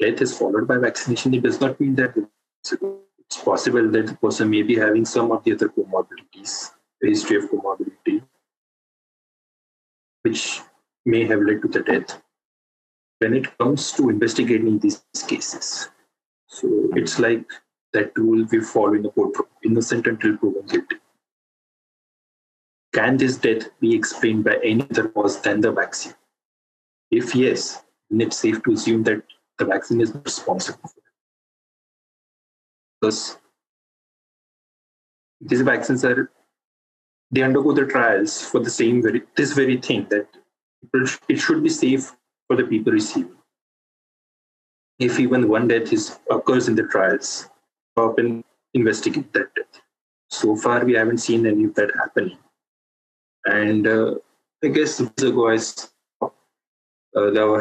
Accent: Indian